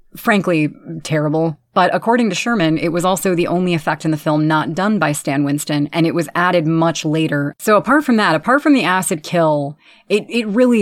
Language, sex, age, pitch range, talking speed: English, female, 30-49, 160-200 Hz, 210 wpm